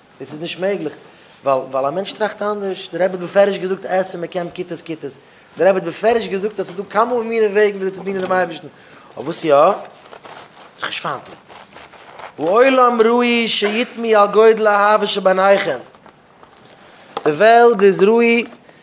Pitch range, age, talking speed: 145-205 Hz, 30-49, 110 wpm